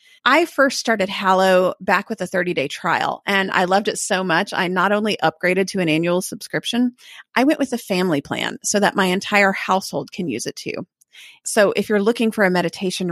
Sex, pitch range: female, 180-235 Hz